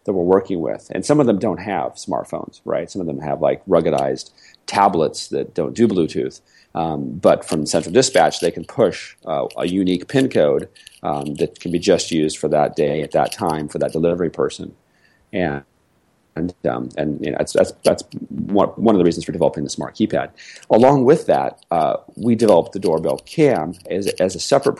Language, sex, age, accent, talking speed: English, male, 40-59, American, 205 wpm